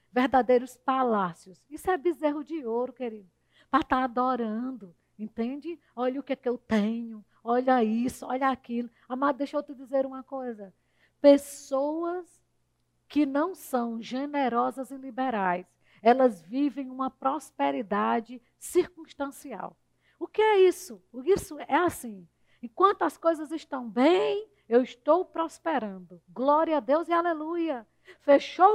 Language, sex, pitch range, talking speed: Portuguese, female, 240-310 Hz, 130 wpm